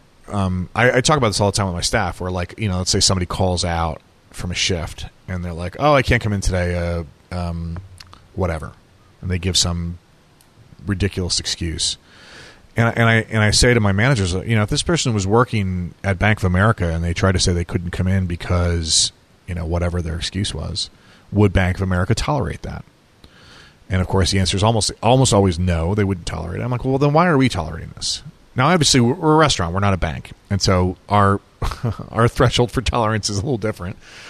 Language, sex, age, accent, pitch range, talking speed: English, male, 30-49, American, 90-115 Hz, 220 wpm